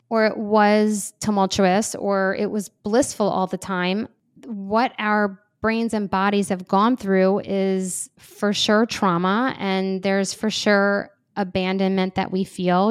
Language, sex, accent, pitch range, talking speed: English, female, American, 185-210 Hz, 145 wpm